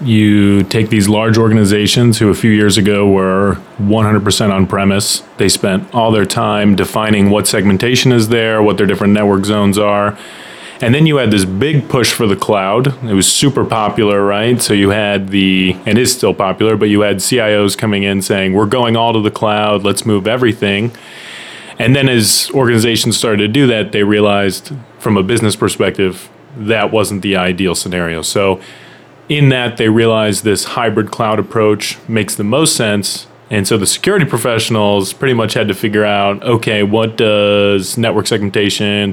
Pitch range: 100-115 Hz